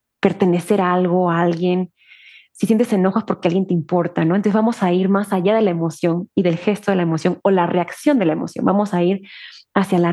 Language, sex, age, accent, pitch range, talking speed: Spanish, female, 20-39, Mexican, 185-230 Hz, 230 wpm